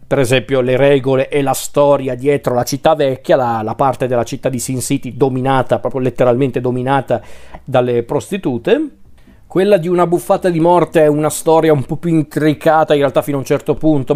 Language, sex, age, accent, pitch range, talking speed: Italian, male, 40-59, native, 125-150 Hz, 190 wpm